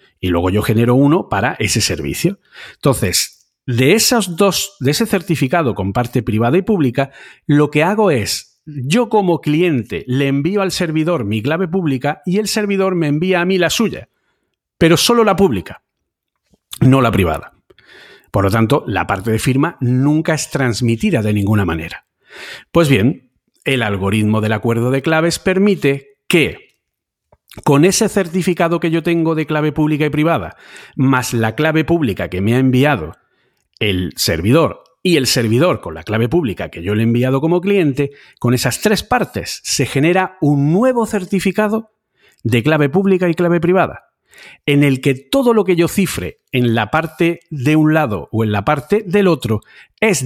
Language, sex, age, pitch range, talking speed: Spanish, male, 40-59, 120-180 Hz, 170 wpm